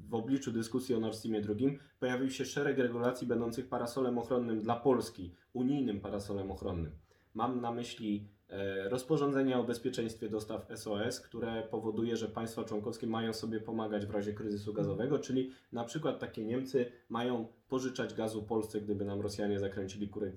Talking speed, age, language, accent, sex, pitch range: 155 wpm, 20-39, Polish, native, male, 105-125 Hz